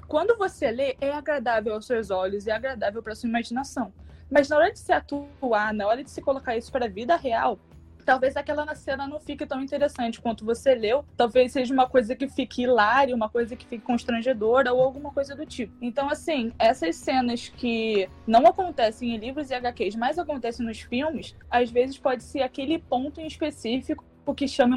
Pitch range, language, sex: 235-295 Hz, Portuguese, female